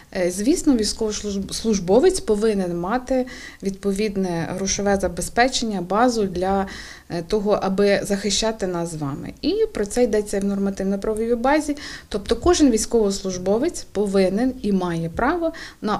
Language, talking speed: Ukrainian, 115 wpm